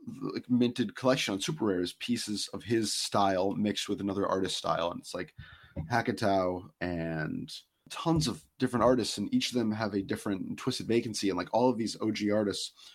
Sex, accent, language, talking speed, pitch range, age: male, American, English, 190 wpm, 95-115 Hz, 30-49